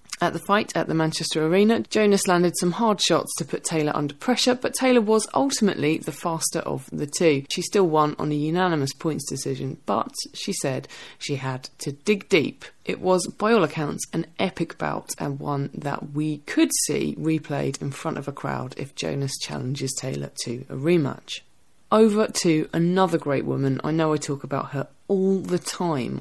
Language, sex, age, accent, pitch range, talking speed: English, female, 20-39, British, 145-190 Hz, 190 wpm